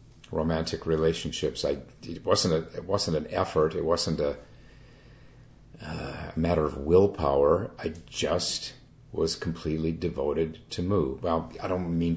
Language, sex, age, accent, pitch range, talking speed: English, male, 50-69, American, 80-130 Hz, 140 wpm